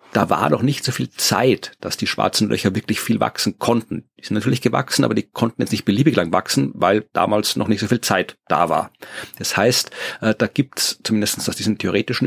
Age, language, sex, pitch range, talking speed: 40-59, German, male, 105-130 Hz, 220 wpm